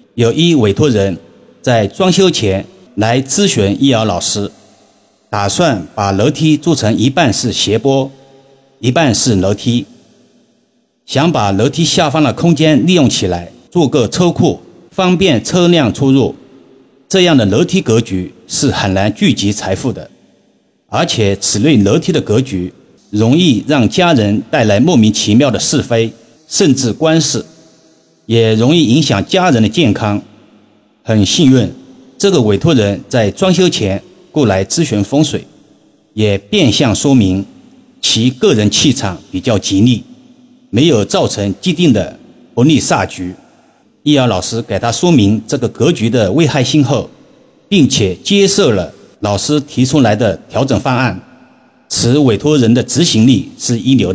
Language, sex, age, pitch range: Chinese, male, 50-69, 105-155 Hz